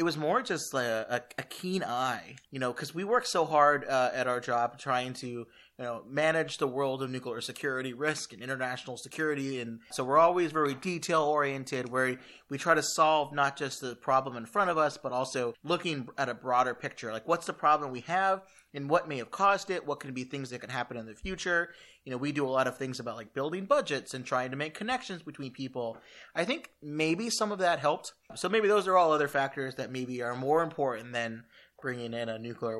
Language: English